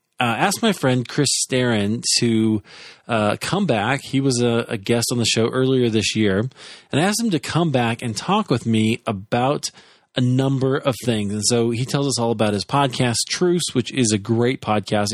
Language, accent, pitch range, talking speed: English, American, 105-130 Hz, 205 wpm